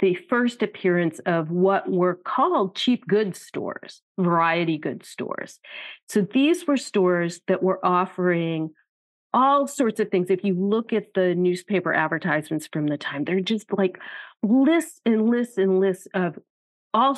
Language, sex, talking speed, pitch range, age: English, female, 155 wpm, 175-230 Hz, 40-59